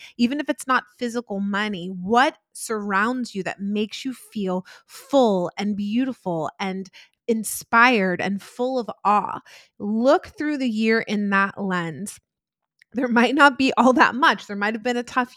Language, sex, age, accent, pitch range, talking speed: English, female, 30-49, American, 200-250 Hz, 165 wpm